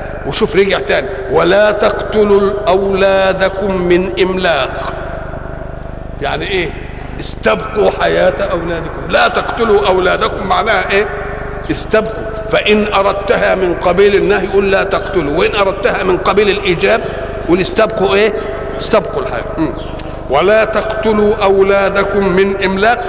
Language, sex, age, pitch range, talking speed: Arabic, male, 50-69, 190-220 Hz, 110 wpm